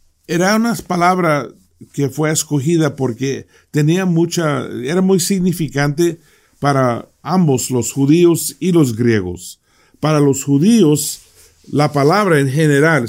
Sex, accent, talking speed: male, Mexican, 120 wpm